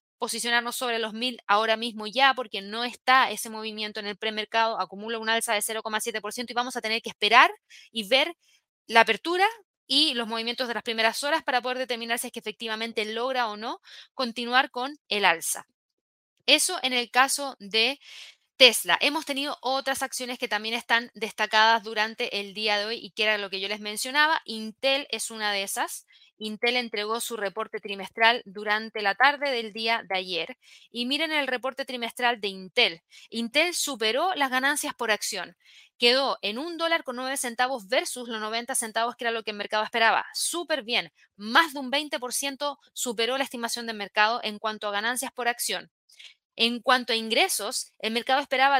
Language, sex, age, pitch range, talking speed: Spanish, female, 20-39, 220-270 Hz, 185 wpm